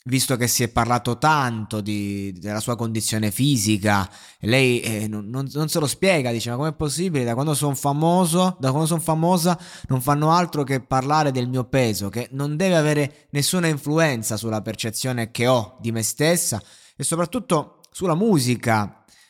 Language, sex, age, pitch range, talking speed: Italian, male, 20-39, 110-140 Hz, 160 wpm